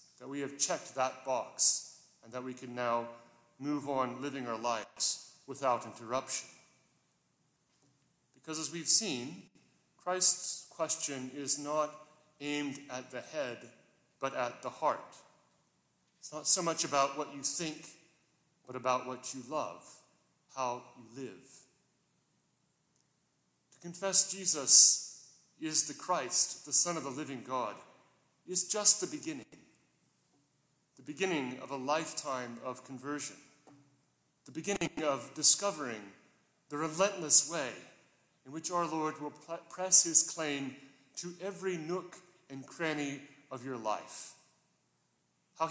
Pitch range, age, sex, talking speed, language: 130-165 Hz, 40-59, male, 125 wpm, English